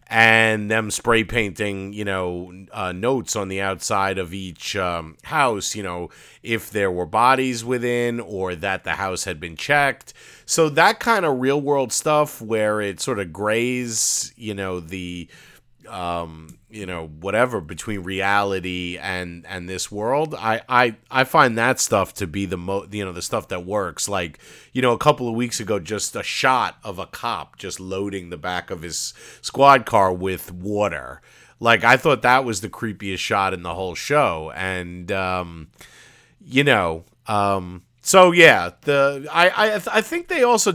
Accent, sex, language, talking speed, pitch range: American, male, English, 175 wpm, 90-120 Hz